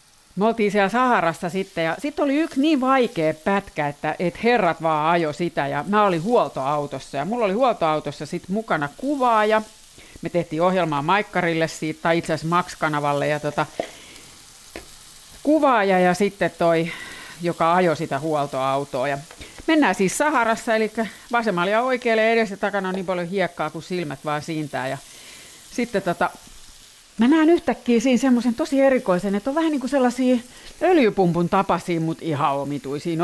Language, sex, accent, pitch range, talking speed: Finnish, female, native, 155-230 Hz, 155 wpm